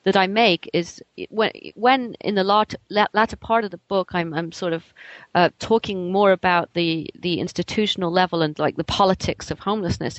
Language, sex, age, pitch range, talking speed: English, female, 30-49, 170-215 Hz, 190 wpm